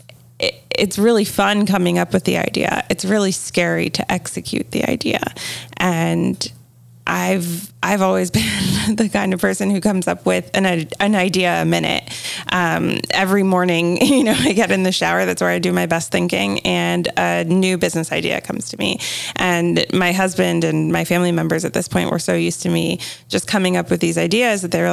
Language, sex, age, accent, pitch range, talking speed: English, female, 20-39, American, 130-220 Hz, 195 wpm